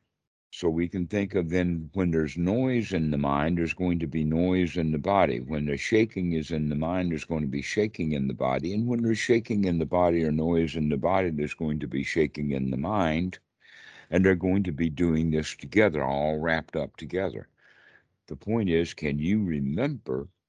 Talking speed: 215 wpm